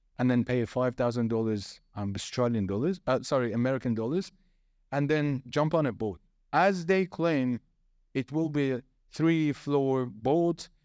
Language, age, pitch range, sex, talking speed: English, 30-49, 120-150 Hz, male, 150 wpm